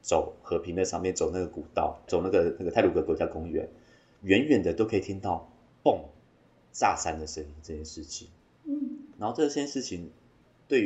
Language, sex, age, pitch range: Chinese, male, 30-49, 85-130 Hz